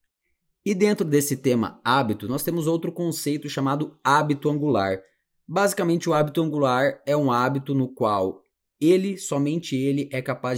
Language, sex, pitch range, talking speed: Portuguese, male, 100-140 Hz, 145 wpm